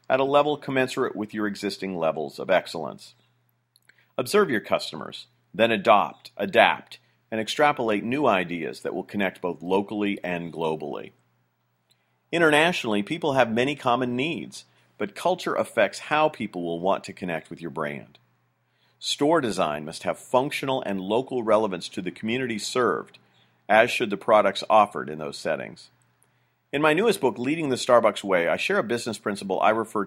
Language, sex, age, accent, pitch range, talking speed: English, male, 40-59, American, 90-125 Hz, 160 wpm